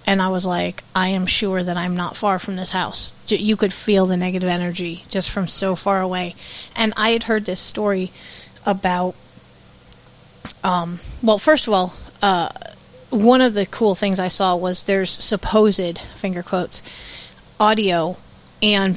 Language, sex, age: English, female, 30-49